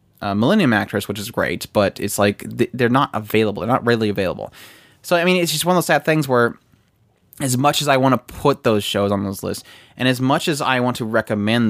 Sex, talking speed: male, 245 wpm